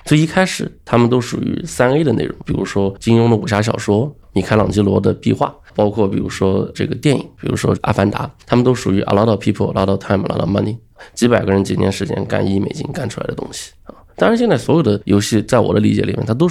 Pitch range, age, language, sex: 100-125 Hz, 20-39, Chinese, male